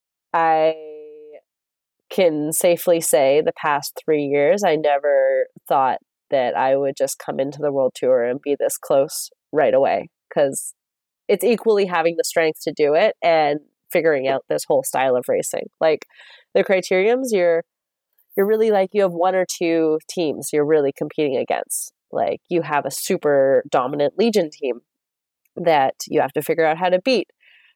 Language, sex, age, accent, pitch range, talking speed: English, female, 30-49, American, 150-210 Hz, 165 wpm